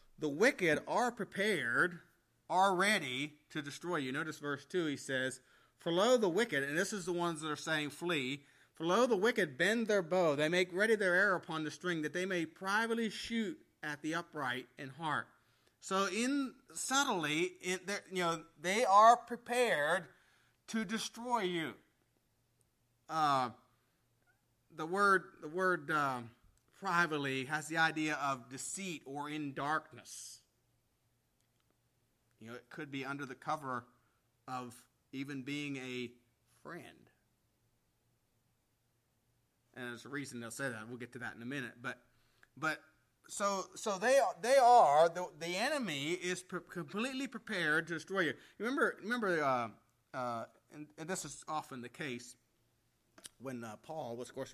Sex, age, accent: male, 30-49, American